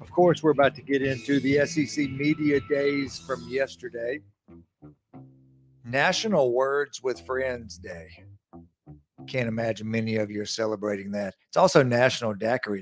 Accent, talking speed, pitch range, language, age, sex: American, 140 wpm, 115-145 Hz, English, 50-69, male